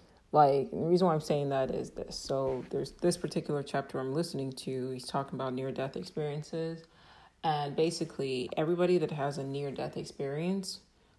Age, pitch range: 30-49, 135-175 Hz